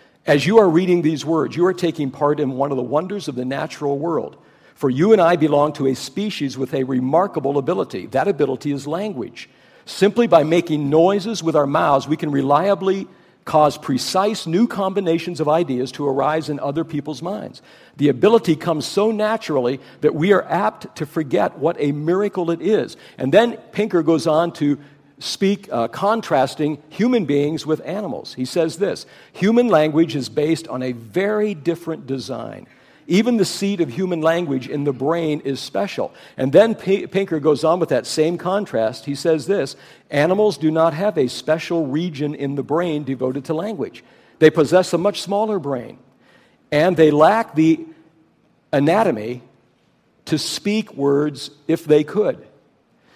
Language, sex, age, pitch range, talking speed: English, male, 50-69, 145-190 Hz, 170 wpm